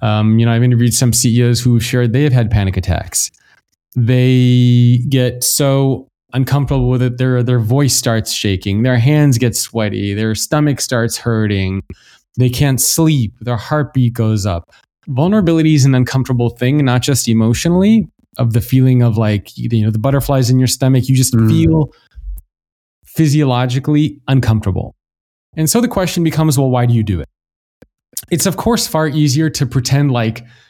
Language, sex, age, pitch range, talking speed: English, male, 20-39, 115-145 Hz, 160 wpm